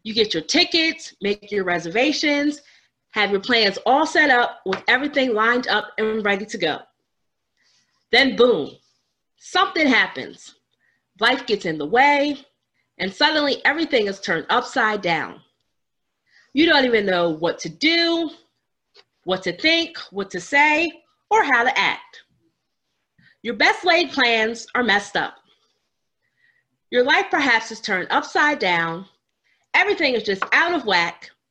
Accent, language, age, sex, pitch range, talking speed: American, English, 30-49, female, 200-315 Hz, 140 wpm